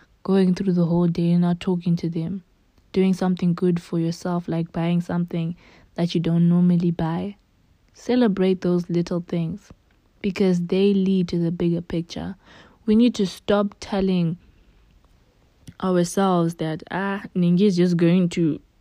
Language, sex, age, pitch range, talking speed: English, female, 20-39, 165-190 Hz, 150 wpm